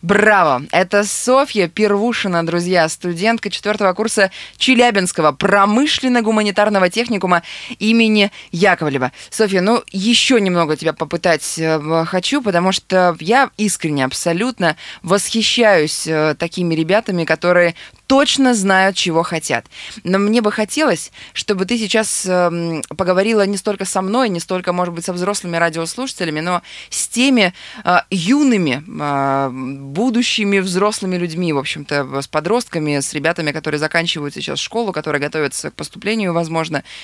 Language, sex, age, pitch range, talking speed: Russian, female, 20-39, 160-210 Hz, 125 wpm